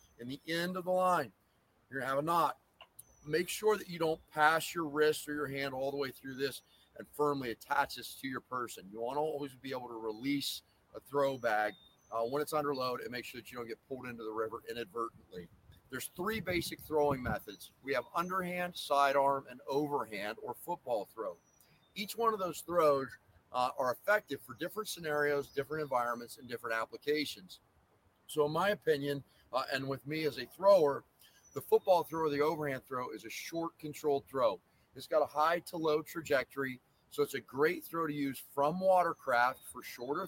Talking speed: 195 wpm